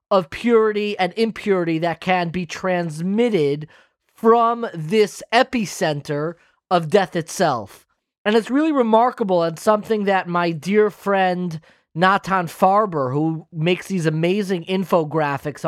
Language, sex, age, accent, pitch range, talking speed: English, male, 30-49, American, 170-220 Hz, 120 wpm